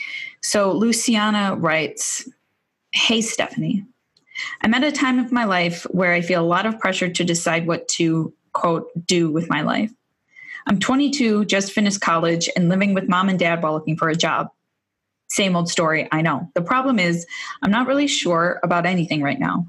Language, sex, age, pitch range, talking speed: English, female, 20-39, 170-215 Hz, 185 wpm